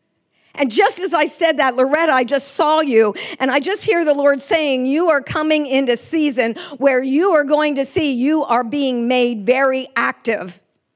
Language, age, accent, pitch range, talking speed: English, 50-69, American, 270-330 Hz, 190 wpm